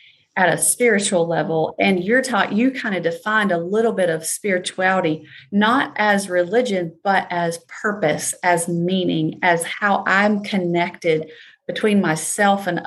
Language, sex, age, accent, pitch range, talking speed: English, female, 30-49, American, 170-210 Hz, 145 wpm